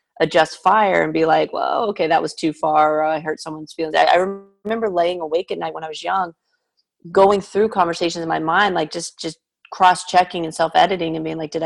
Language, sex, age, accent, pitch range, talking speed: English, female, 30-49, American, 160-190 Hz, 220 wpm